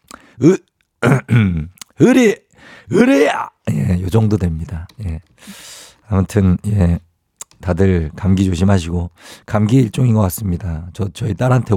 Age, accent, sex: 50-69, native, male